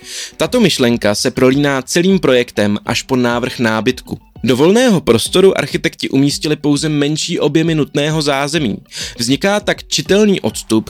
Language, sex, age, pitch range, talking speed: Czech, male, 20-39, 120-165 Hz, 130 wpm